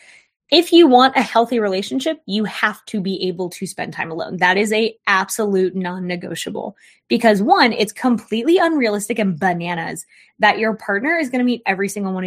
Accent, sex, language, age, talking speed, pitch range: American, female, English, 20-39, 180 wpm, 195-245 Hz